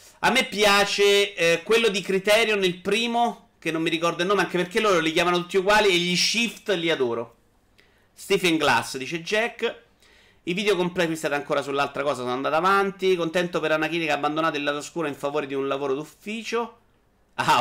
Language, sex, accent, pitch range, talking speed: Italian, male, native, 140-210 Hz, 185 wpm